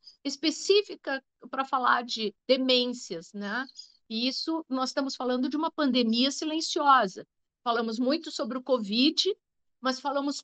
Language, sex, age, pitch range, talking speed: Portuguese, female, 50-69, 235-295 Hz, 125 wpm